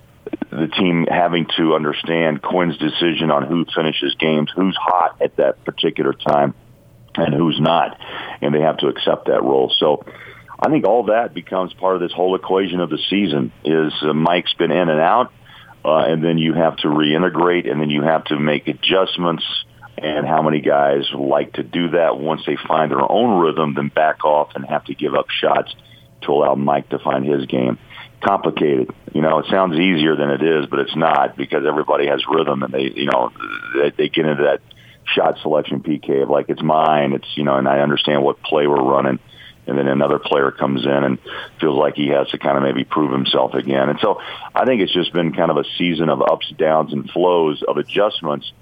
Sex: male